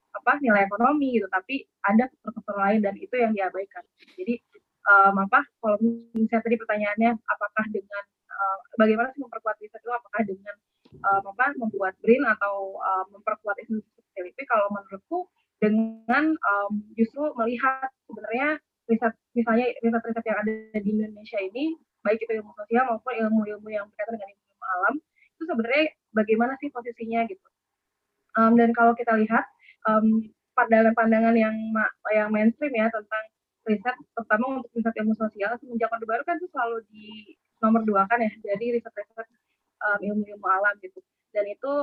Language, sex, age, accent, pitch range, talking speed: Indonesian, female, 20-39, native, 210-245 Hz, 155 wpm